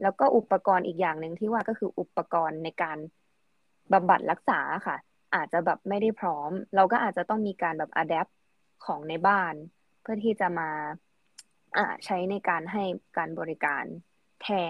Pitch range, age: 185-240 Hz, 20-39